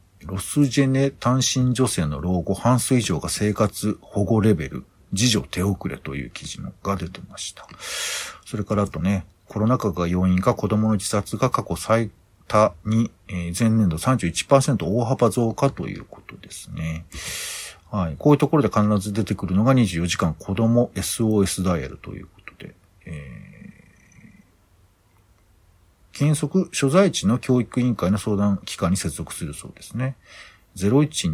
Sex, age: male, 50-69